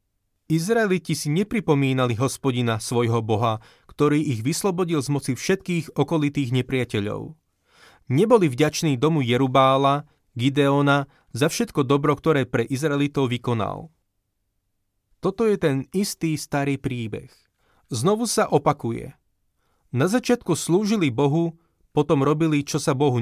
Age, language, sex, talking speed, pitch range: 30-49, Slovak, male, 115 wpm, 125-160 Hz